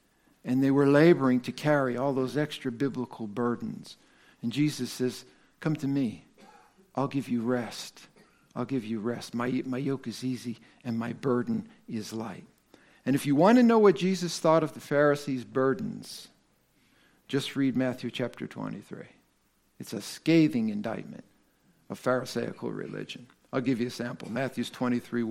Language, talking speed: English, 160 wpm